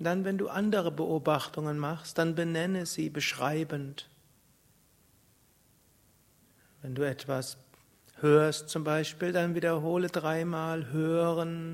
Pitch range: 140-160 Hz